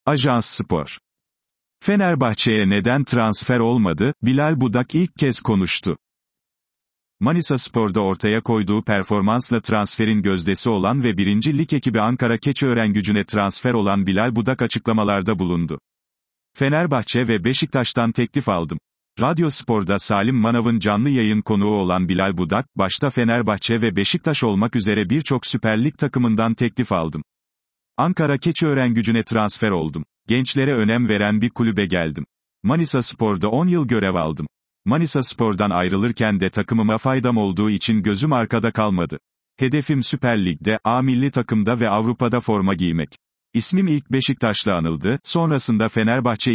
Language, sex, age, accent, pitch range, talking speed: Turkish, male, 40-59, native, 105-130 Hz, 130 wpm